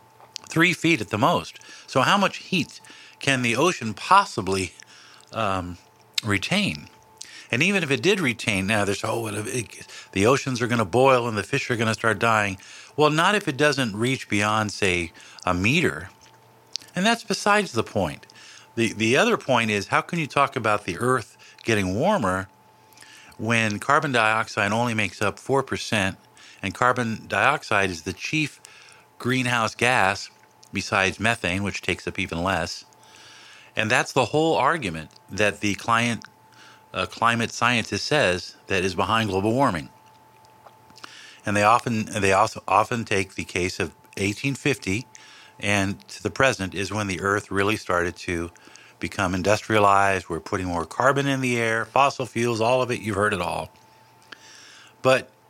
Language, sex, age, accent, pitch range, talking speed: English, male, 50-69, American, 100-125 Hz, 160 wpm